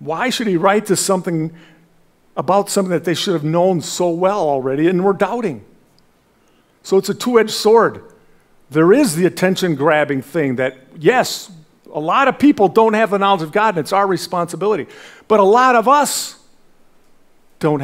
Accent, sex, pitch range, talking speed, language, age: American, male, 135-210 Hz, 175 wpm, English, 50-69